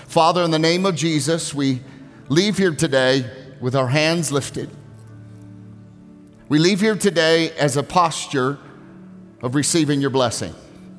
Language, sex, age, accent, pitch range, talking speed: English, male, 40-59, American, 135-180 Hz, 135 wpm